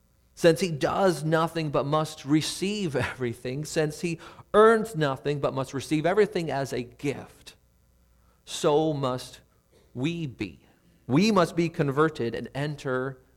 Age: 40-59